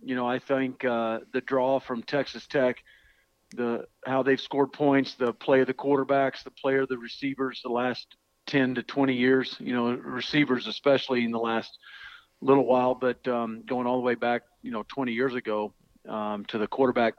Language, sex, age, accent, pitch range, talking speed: English, male, 50-69, American, 125-140 Hz, 195 wpm